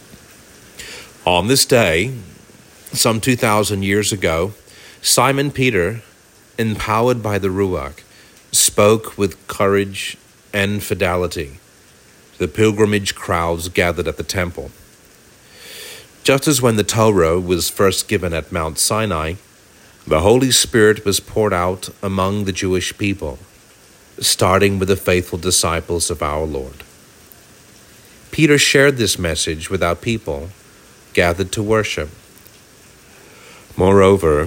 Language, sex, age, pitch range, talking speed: English, male, 40-59, 90-110 Hz, 115 wpm